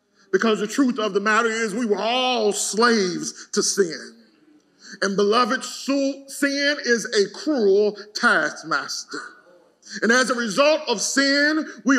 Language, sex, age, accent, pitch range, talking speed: English, male, 40-59, American, 230-310 Hz, 135 wpm